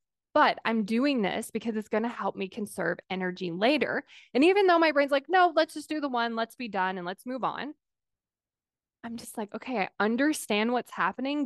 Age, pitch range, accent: 20-39, 215-290 Hz, American